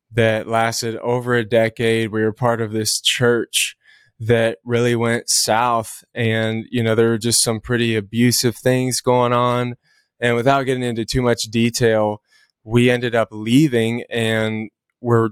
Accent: American